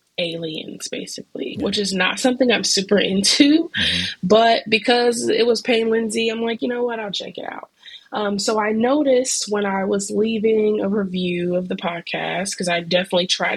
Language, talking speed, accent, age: English, 180 wpm, American, 20-39